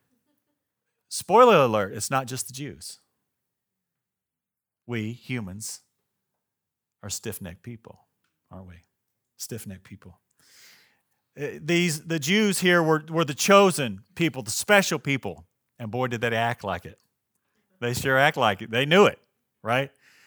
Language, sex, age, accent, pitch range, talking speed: English, male, 40-59, American, 120-160 Hz, 130 wpm